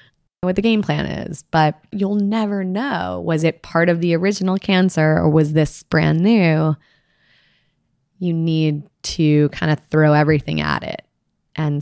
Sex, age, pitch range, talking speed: female, 20-39, 145-165 Hz, 155 wpm